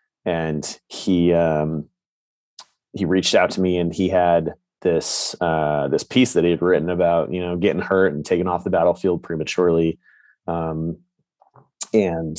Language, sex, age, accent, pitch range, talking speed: English, male, 30-49, American, 80-95 Hz, 155 wpm